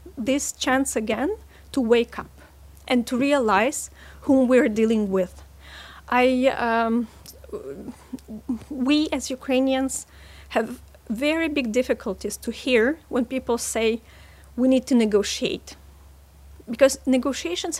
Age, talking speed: 40-59, 115 wpm